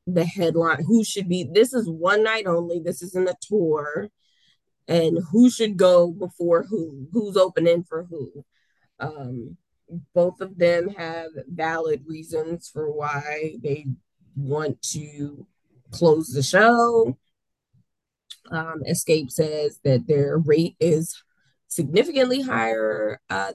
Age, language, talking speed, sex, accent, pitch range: 20-39, English, 125 wpm, female, American, 150-185 Hz